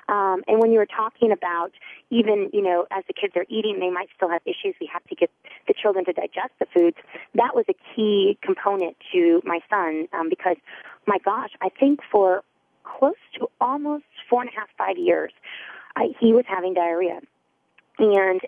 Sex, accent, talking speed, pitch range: female, American, 195 wpm, 185-250 Hz